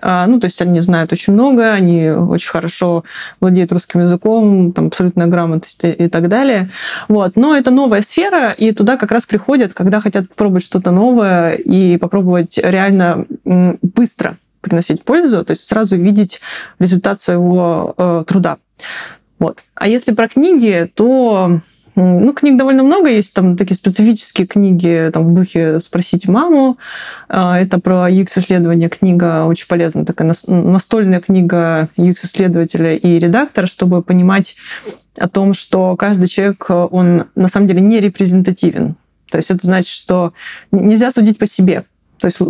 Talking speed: 145 wpm